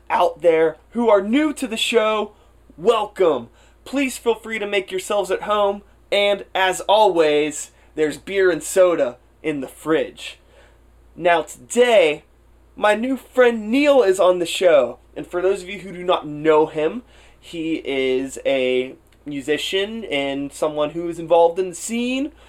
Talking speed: 155 wpm